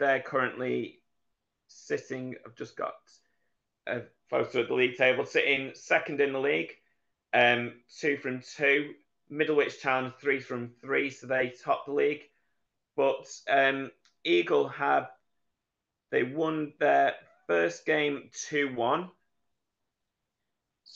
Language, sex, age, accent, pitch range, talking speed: English, male, 30-49, British, 120-140 Hz, 115 wpm